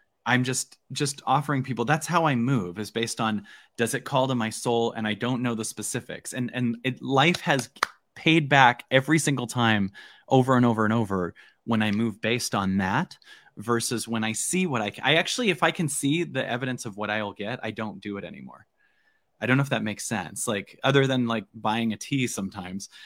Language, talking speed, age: English, 215 wpm, 20-39